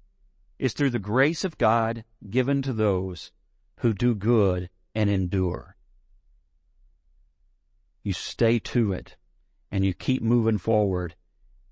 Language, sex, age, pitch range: English, male, 50-69, 90-140 Hz